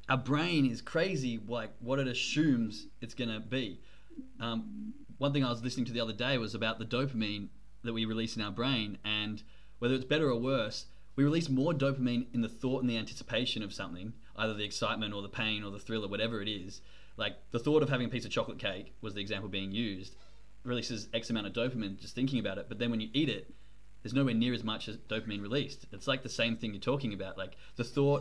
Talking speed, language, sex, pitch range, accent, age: 235 wpm, English, male, 105-130 Hz, Australian, 20-39